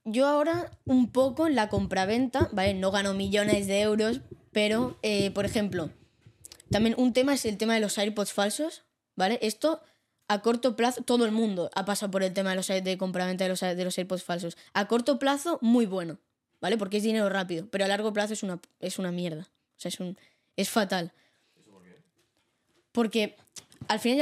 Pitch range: 190-225 Hz